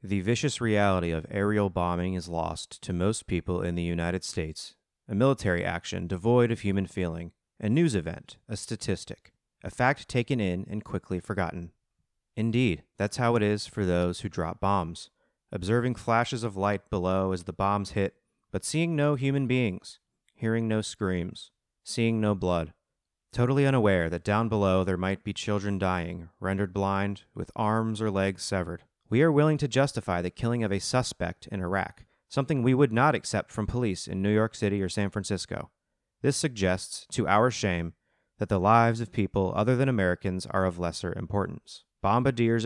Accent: American